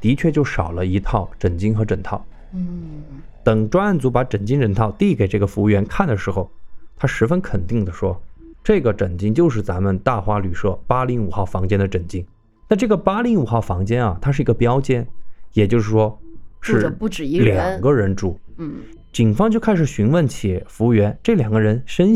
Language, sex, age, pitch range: Chinese, male, 20-39, 105-150 Hz